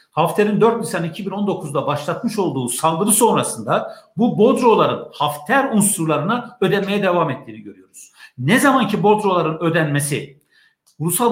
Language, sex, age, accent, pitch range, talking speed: Turkish, male, 60-79, native, 150-215 Hz, 115 wpm